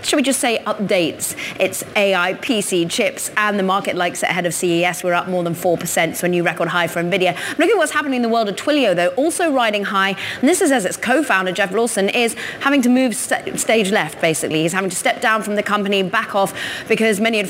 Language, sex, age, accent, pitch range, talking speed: English, female, 30-49, British, 180-220 Hz, 245 wpm